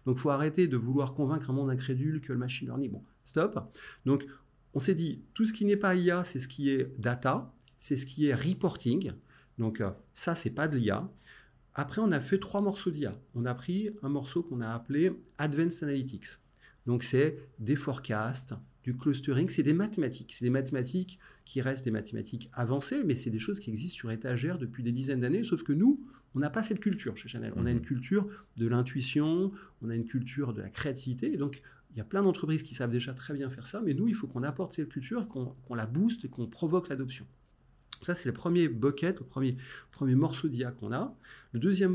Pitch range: 120-165 Hz